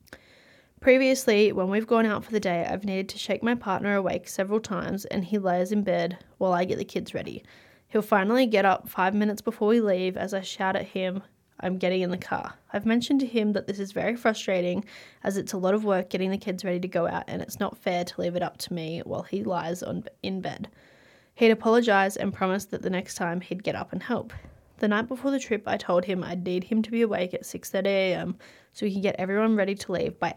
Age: 20-39